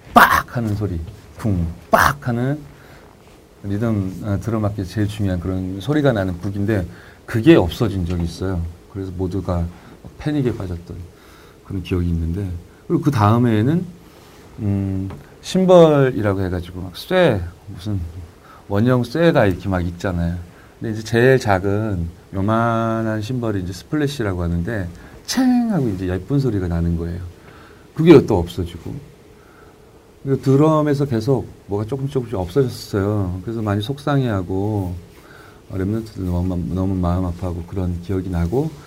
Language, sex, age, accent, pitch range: Korean, male, 40-59, native, 90-120 Hz